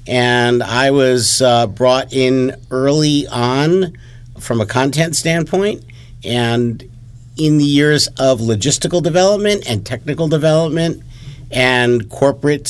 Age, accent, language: 50-69, American, English